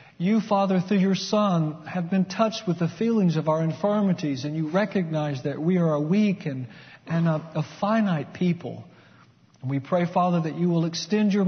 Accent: American